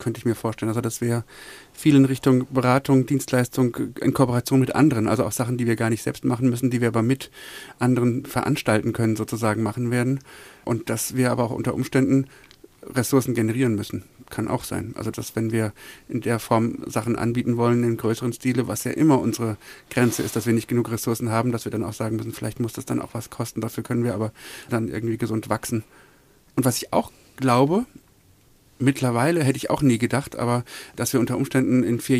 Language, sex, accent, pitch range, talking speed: German, male, German, 115-135 Hz, 210 wpm